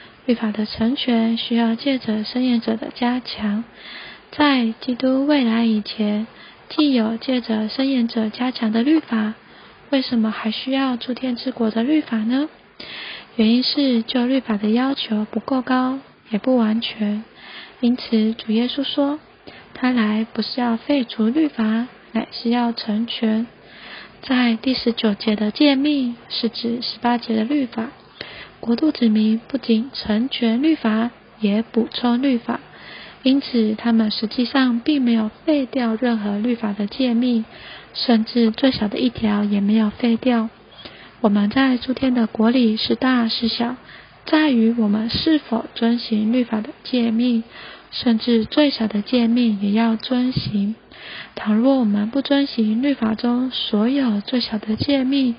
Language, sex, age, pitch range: Chinese, female, 20-39, 220-255 Hz